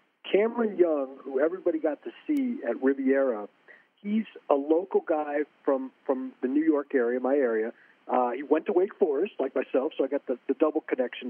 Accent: American